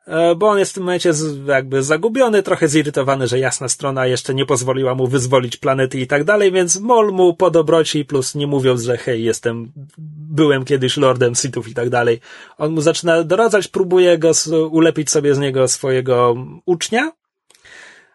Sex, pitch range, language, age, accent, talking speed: male, 130-160 Hz, Polish, 30-49, native, 170 wpm